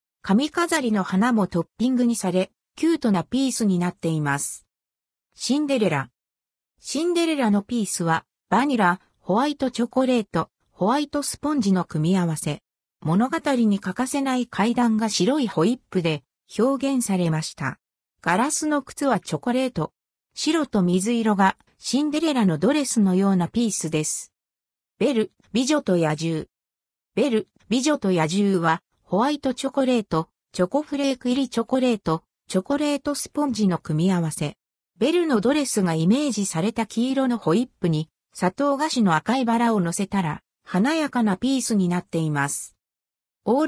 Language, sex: Japanese, female